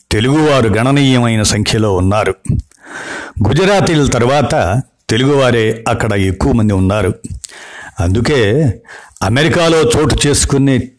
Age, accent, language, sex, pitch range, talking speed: 60-79, native, Telugu, male, 110-145 Hz, 80 wpm